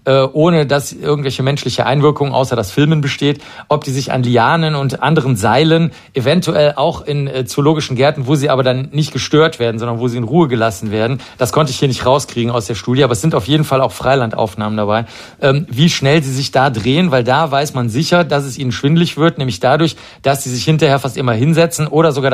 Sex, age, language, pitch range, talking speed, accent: male, 40-59, German, 125-155 Hz, 220 wpm, German